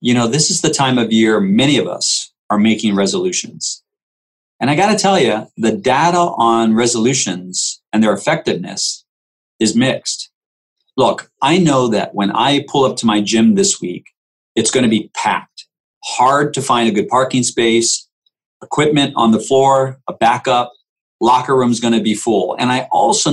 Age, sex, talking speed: 40-59, male, 180 wpm